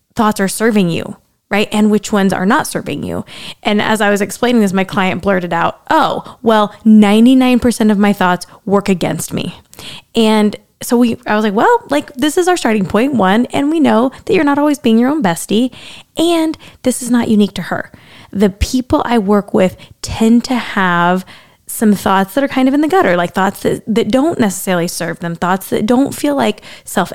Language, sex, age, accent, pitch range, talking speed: English, female, 10-29, American, 195-250 Hz, 210 wpm